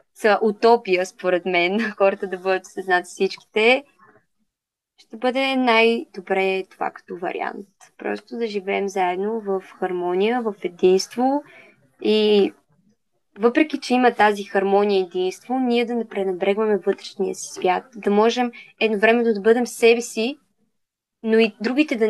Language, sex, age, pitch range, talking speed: Bulgarian, female, 20-39, 195-235 Hz, 135 wpm